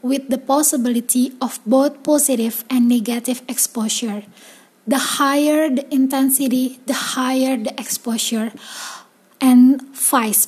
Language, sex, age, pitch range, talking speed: English, female, 20-39, 245-285 Hz, 110 wpm